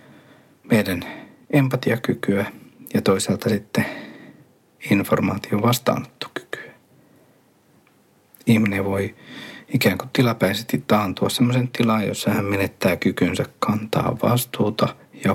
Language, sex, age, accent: Finnish, male, 60-79, native